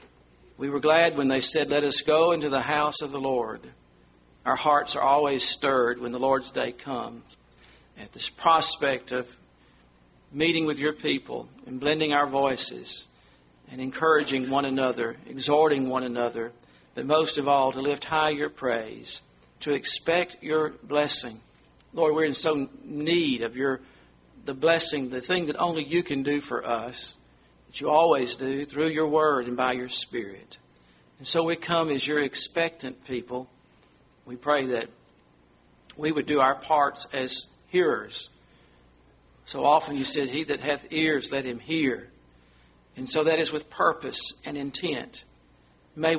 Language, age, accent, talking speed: English, 50-69, American, 160 wpm